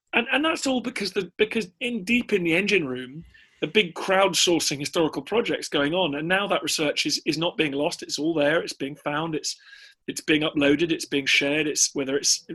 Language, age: English, 30-49